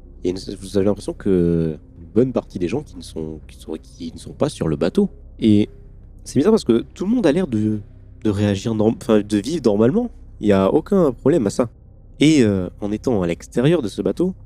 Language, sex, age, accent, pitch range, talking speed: French, male, 30-49, French, 95-120 Hz, 235 wpm